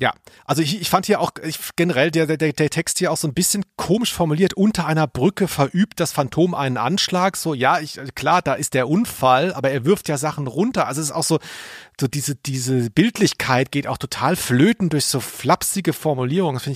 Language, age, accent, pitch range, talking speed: German, 40-59, German, 140-180 Hz, 220 wpm